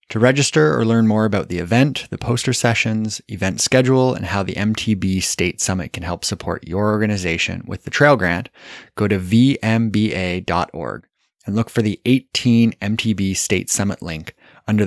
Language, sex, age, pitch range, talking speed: English, male, 20-39, 95-125 Hz, 165 wpm